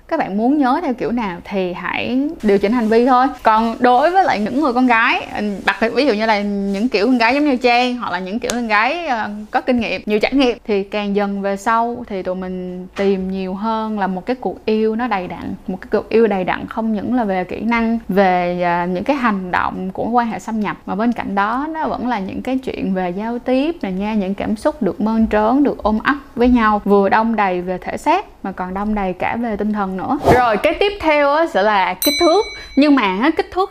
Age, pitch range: 10-29, 200-270 Hz